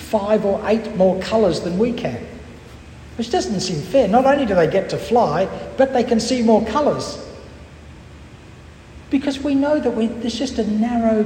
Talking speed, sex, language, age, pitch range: 175 wpm, male, English, 60-79, 160-240 Hz